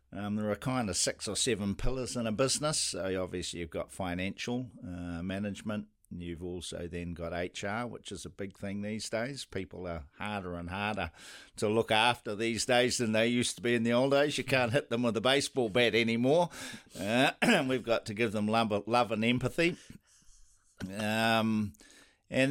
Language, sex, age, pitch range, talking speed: English, male, 50-69, 90-120 Hz, 195 wpm